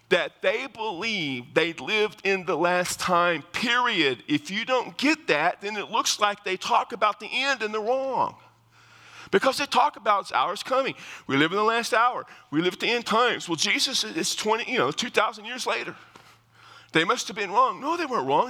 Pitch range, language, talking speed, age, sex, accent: 180-255 Hz, English, 210 wpm, 50-69, male, American